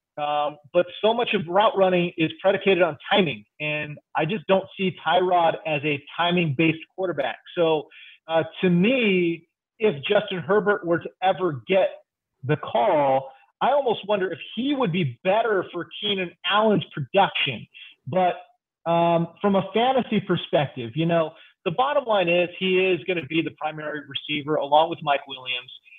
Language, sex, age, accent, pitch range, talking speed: English, male, 30-49, American, 155-190 Hz, 165 wpm